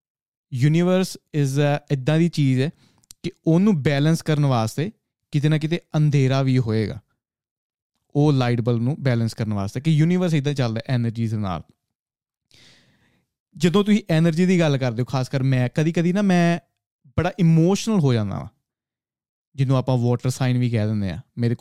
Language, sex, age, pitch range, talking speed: Punjabi, male, 20-39, 120-155 Hz, 165 wpm